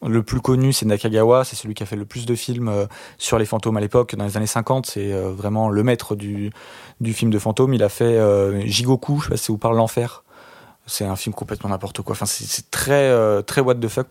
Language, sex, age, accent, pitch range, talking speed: French, male, 20-39, French, 105-125 Hz, 265 wpm